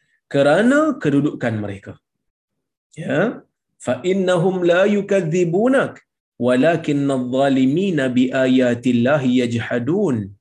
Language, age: Malayalam, 30-49